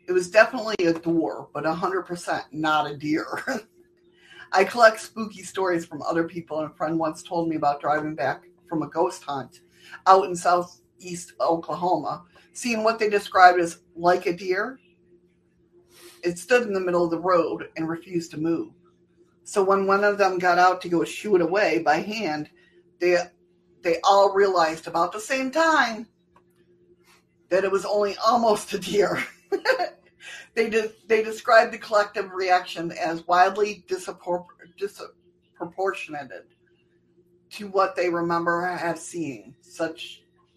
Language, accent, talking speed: English, American, 150 wpm